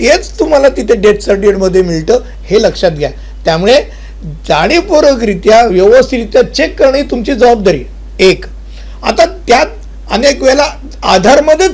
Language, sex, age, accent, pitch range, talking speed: Hindi, male, 50-69, native, 190-280 Hz, 90 wpm